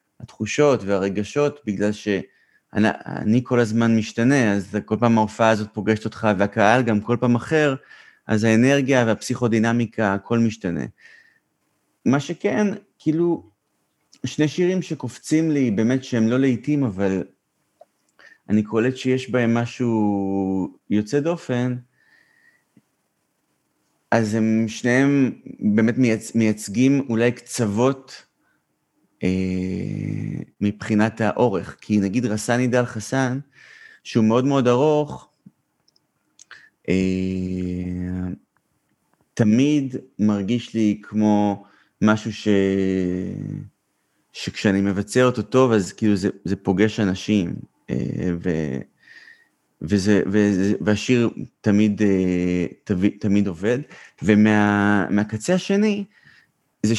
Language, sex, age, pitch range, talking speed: Hebrew, male, 30-49, 100-130 Hz, 95 wpm